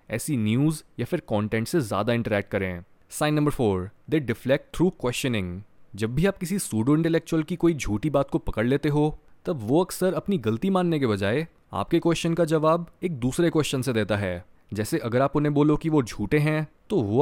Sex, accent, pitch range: male, native, 110-165 Hz